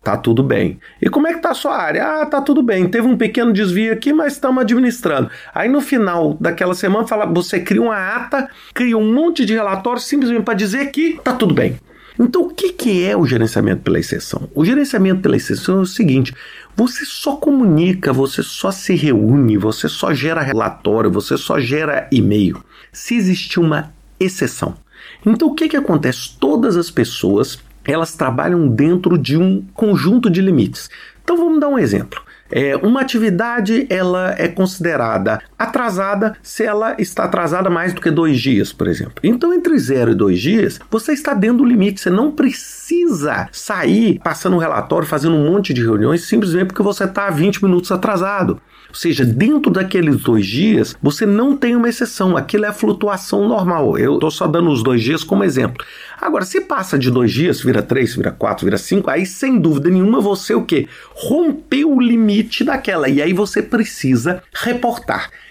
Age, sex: 40-59, male